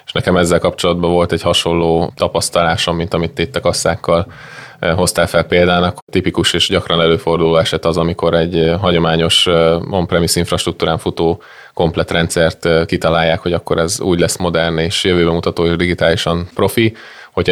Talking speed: 145 wpm